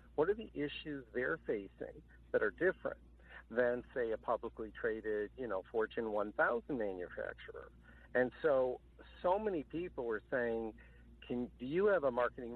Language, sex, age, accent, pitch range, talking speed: English, male, 60-79, American, 110-145 Hz, 150 wpm